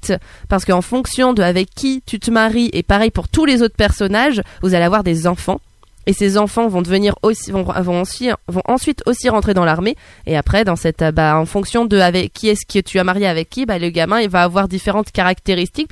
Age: 20-39